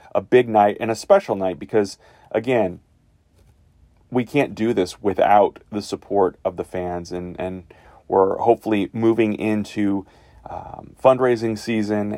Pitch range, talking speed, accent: 90-110 Hz, 140 wpm, American